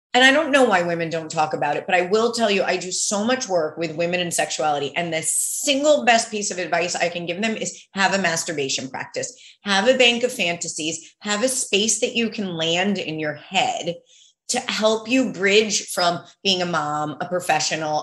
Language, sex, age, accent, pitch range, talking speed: English, female, 30-49, American, 175-240 Hz, 215 wpm